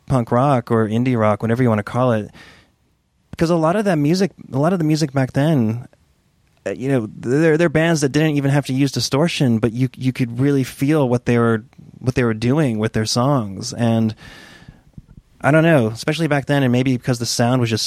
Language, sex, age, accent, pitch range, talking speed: English, male, 30-49, American, 115-140 Hz, 220 wpm